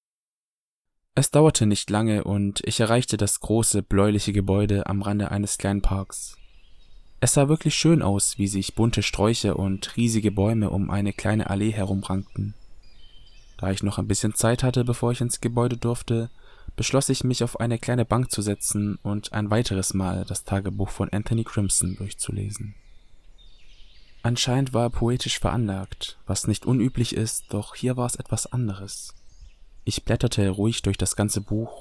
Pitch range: 100-120 Hz